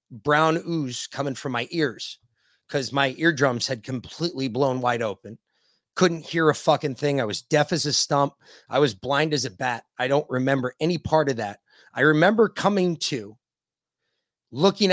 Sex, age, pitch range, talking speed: male, 30-49, 130-165 Hz, 175 wpm